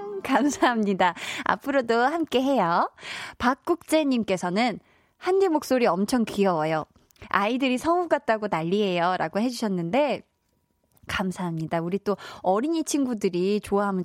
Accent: native